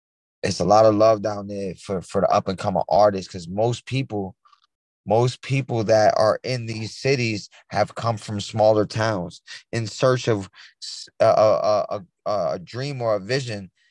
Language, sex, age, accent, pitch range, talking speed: English, male, 20-39, American, 105-130 Hz, 165 wpm